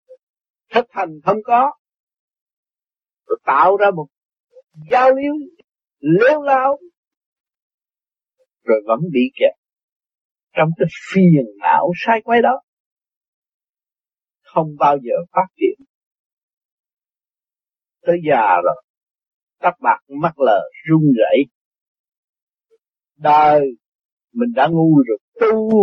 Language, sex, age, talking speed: English, male, 50-69, 100 wpm